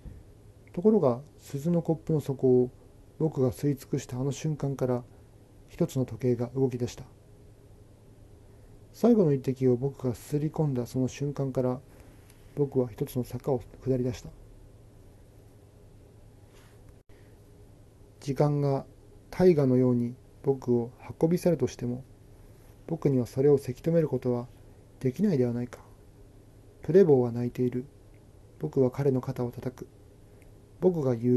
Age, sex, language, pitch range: 40-59, male, Japanese, 100-135 Hz